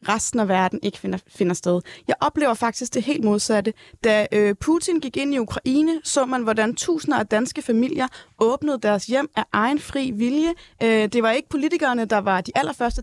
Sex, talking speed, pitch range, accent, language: female, 195 wpm, 200-255 Hz, native, Danish